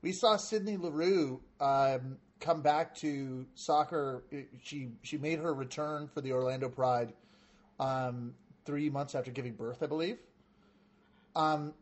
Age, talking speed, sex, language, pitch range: 30-49, 135 wpm, male, English, 145-205 Hz